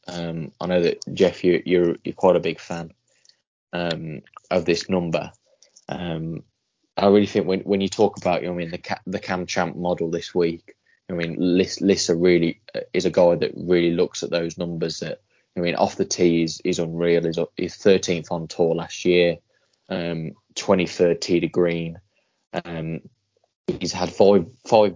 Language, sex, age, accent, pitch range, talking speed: English, male, 20-39, British, 85-90 Hz, 180 wpm